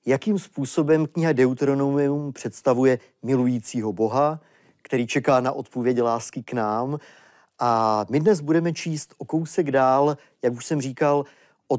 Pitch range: 125-160 Hz